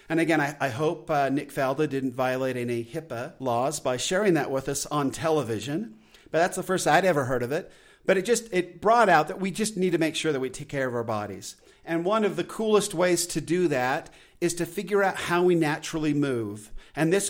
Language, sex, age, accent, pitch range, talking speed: English, male, 50-69, American, 145-180 Hz, 230 wpm